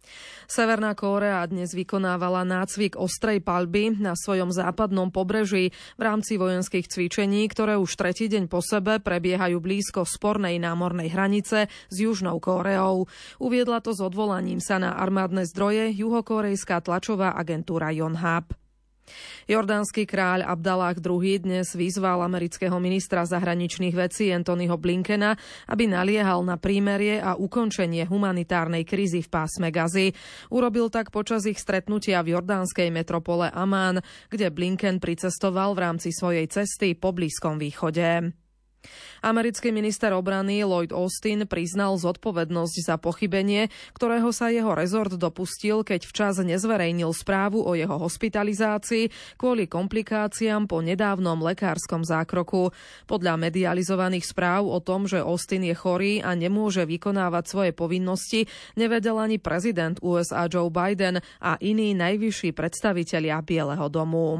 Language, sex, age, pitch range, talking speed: Slovak, female, 30-49, 175-210 Hz, 125 wpm